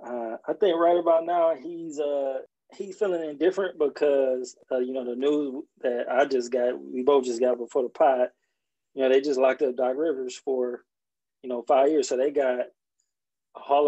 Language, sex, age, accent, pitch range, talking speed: English, male, 20-39, American, 125-150 Hz, 205 wpm